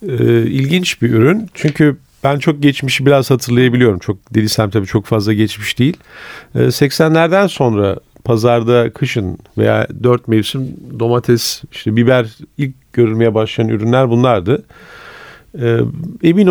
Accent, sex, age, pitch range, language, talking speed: native, male, 40-59, 110-145 Hz, Turkish, 115 wpm